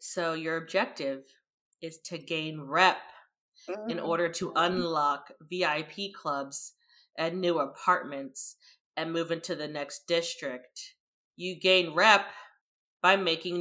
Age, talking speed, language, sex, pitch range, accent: 20-39, 120 wpm, English, female, 170-210 Hz, American